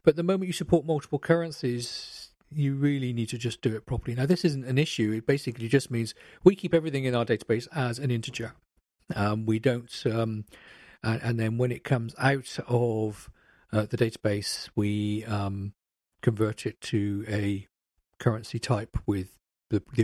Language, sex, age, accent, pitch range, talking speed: English, male, 40-59, British, 110-130 Hz, 175 wpm